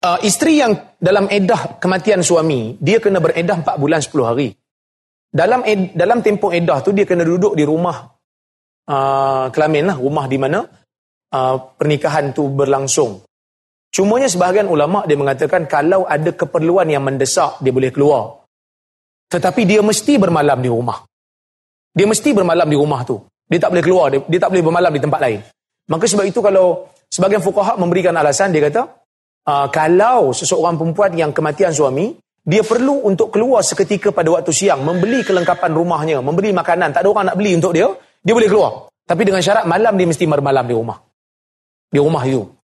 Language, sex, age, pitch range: Malay, male, 30-49, 145-205 Hz